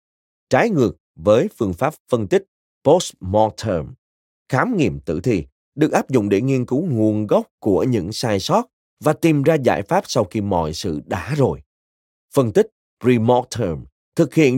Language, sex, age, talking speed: Vietnamese, male, 30-49, 165 wpm